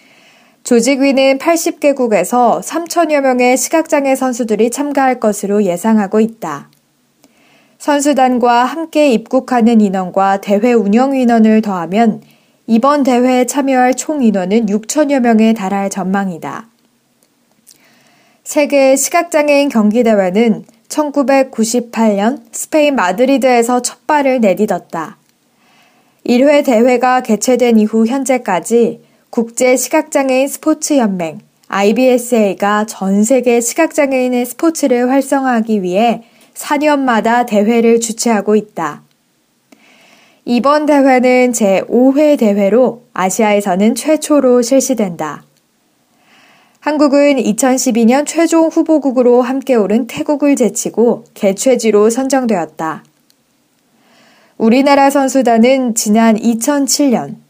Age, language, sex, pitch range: 20-39, Korean, female, 220-275 Hz